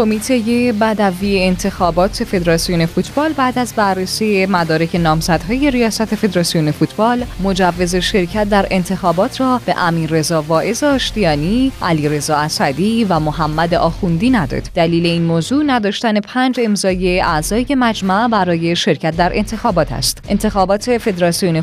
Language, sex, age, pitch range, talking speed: Persian, female, 10-29, 165-220 Hz, 120 wpm